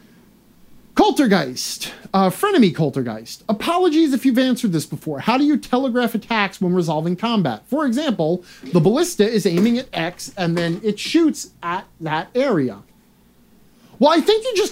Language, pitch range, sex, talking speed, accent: English, 155-240 Hz, male, 155 wpm, American